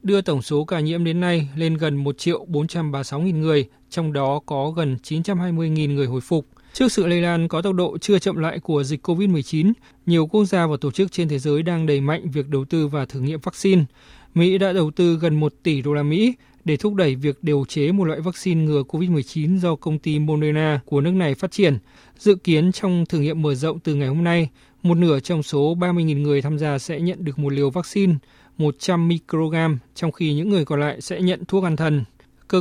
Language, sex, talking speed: Vietnamese, male, 225 wpm